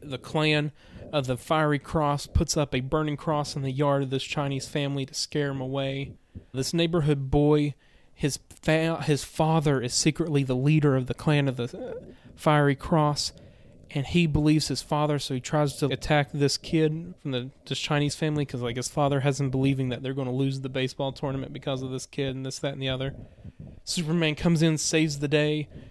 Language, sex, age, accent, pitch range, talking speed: English, male, 30-49, American, 135-155 Hz, 205 wpm